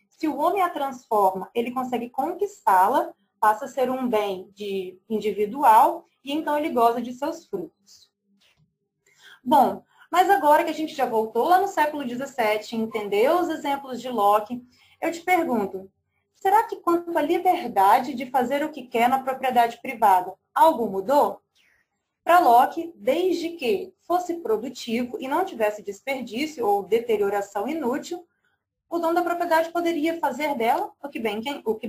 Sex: female